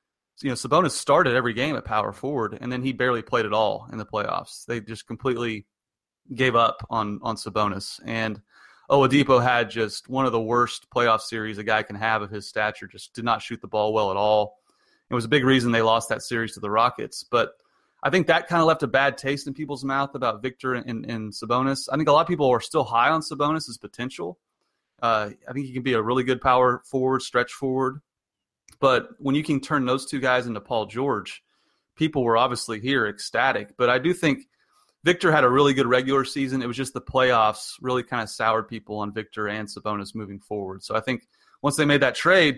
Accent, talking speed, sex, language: American, 225 wpm, male, English